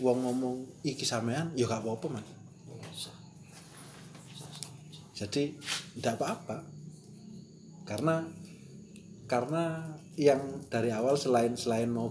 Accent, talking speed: native, 85 wpm